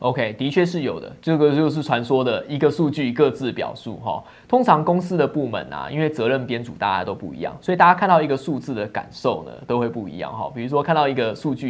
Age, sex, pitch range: 20-39, male, 115-150 Hz